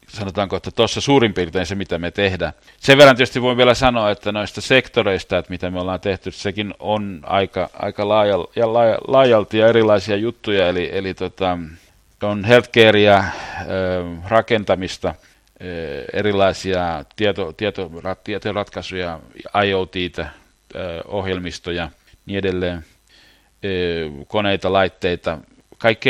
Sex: male